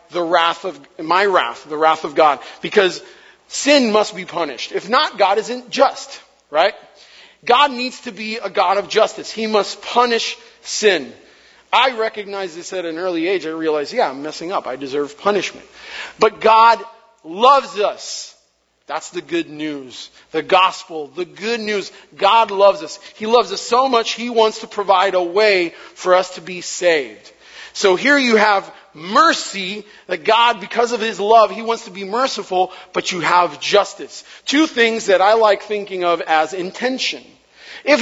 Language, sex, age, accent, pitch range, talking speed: English, male, 40-59, American, 180-230 Hz, 175 wpm